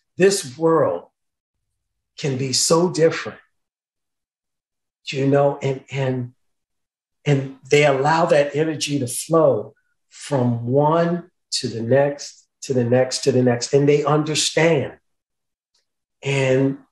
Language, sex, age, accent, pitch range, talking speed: English, male, 50-69, American, 140-200 Hz, 115 wpm